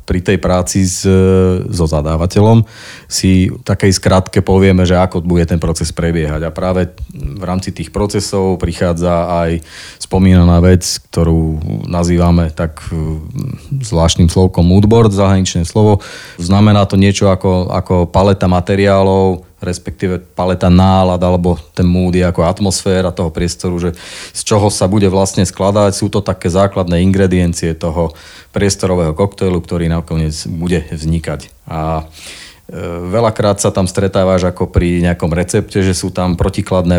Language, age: Slovak, 30-49